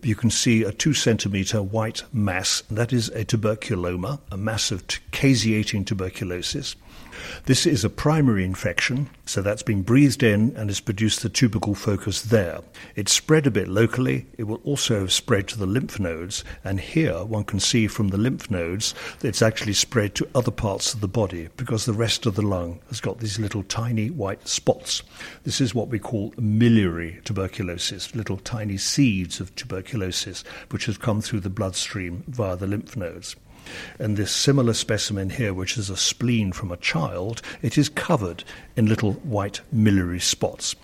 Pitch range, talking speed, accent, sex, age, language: 95-120 Hz, 180 wpm, British, male, 50-69, English